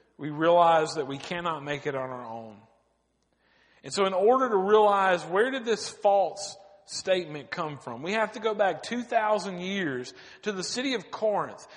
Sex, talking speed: male, 180 wpm